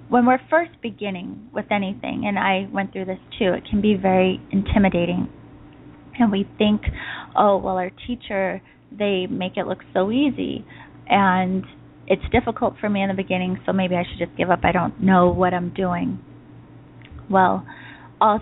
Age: 20-39